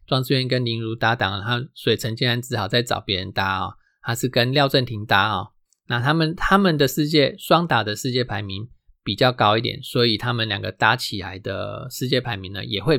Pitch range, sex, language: 115-140 Hz, male, Chinese